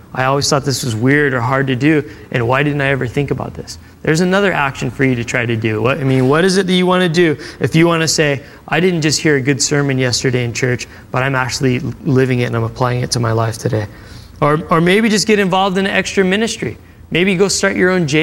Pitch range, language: 135-175 Hz, English